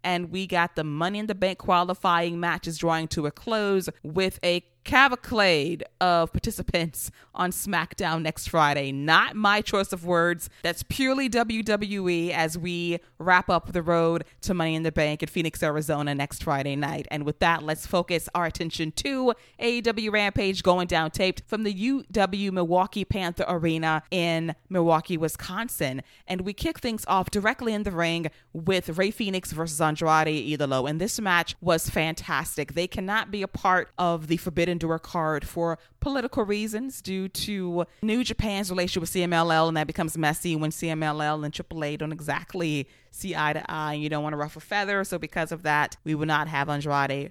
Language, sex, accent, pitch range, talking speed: English, female, American, 155-185 Hz, 180 wpm